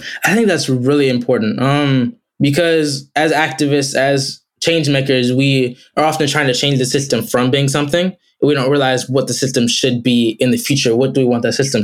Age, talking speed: 10-29, 205 wpm